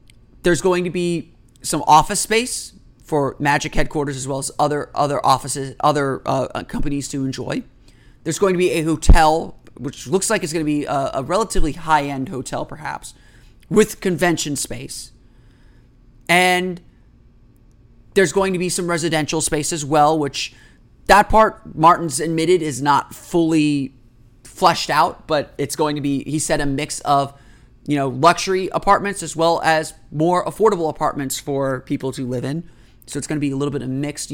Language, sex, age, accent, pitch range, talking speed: English, male, 30-49, American, 135-170 Hz, 170 wpm